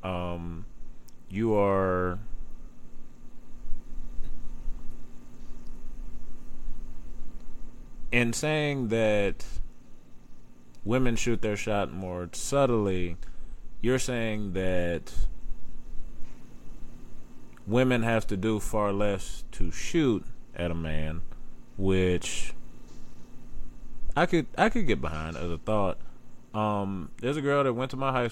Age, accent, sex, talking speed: 20-39, American, male, 95 wpm